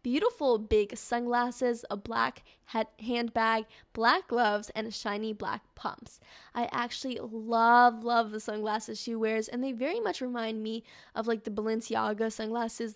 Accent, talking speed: American, 155 wpm